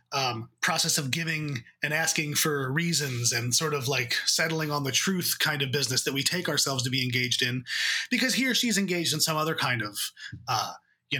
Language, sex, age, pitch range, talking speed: English, male, 20-39, 135-190 Hz, 210 wpm